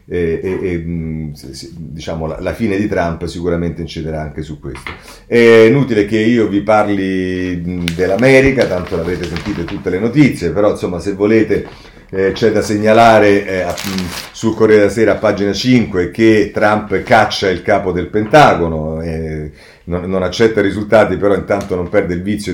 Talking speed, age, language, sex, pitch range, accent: 160 wpm, 40-59, Italian, male, 90-110 Hz, native